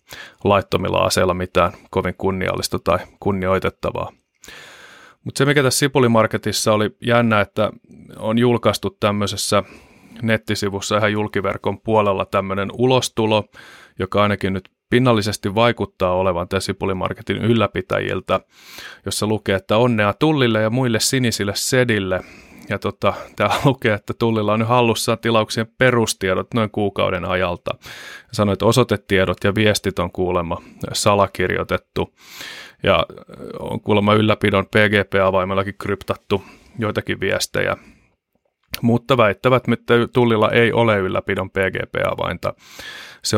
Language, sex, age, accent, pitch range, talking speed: Finnish, male, 30-49, native, 95-115 Hz, 110 wpm